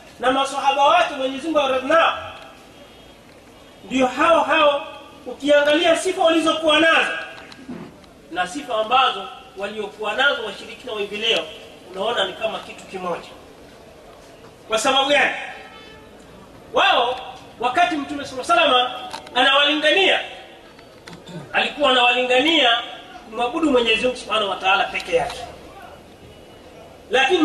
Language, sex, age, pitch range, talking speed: Swahili, male, 30-49, 250-320 Hz, 105 wpm